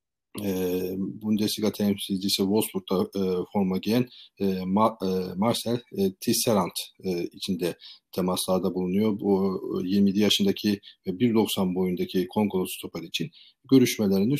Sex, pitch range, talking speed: male, 100-120 Hz, 110 wpm